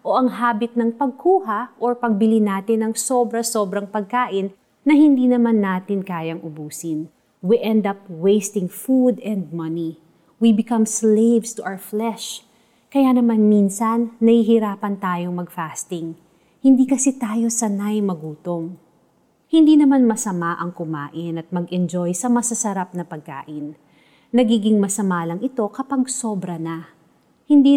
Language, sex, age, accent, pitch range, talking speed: Filipino, female, 30-49, native, 180-240 Hz, 130 wpm